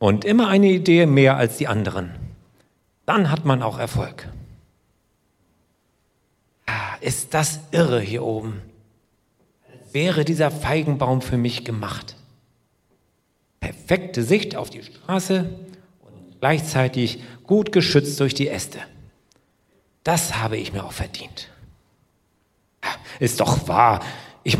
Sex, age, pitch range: male, 40-59, 115-155 Hz